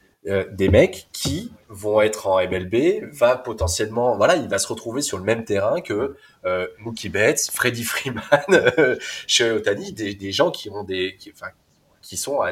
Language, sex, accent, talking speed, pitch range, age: French, male, French, 175 wpm, 95-125 Hz, 20-39